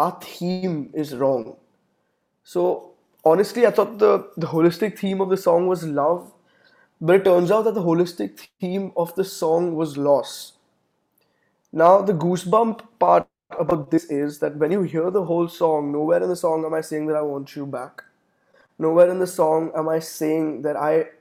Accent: Indian